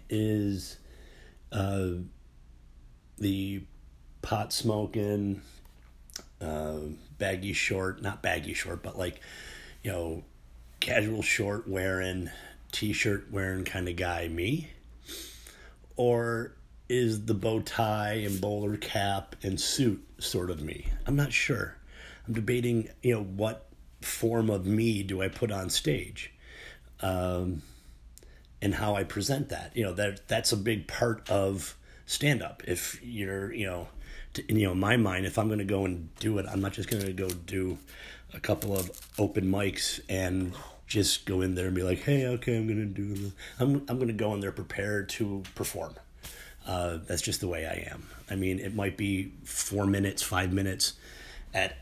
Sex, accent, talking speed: male, American, 160 wpm